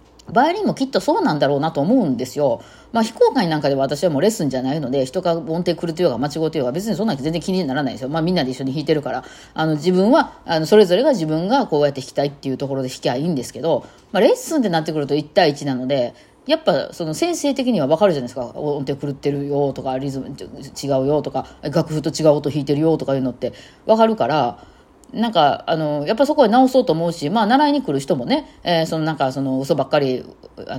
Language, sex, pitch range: Japanese, female, 140-205 Hz